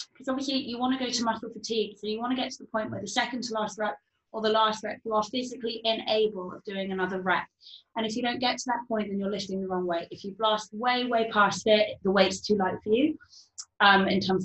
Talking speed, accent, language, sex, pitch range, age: 270 wpm, British, English, female, 190-240 Hz, 20-39